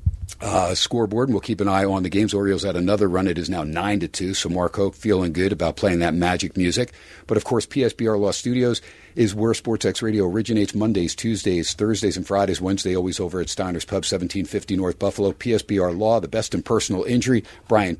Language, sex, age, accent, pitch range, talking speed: English, male, 50-69, American, 90-110 Hz, 210 wpm